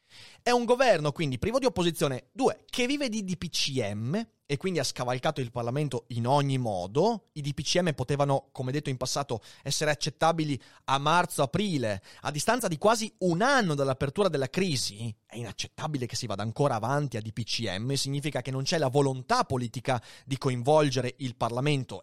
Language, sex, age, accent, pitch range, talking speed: Italian, male, 30-49, native, 125-180 Hz, 165 wpm